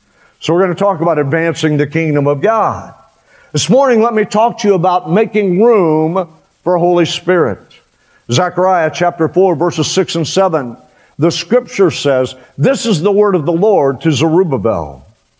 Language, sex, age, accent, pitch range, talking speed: English, male, 50-69, American, 150-205 Hz, 170 wpm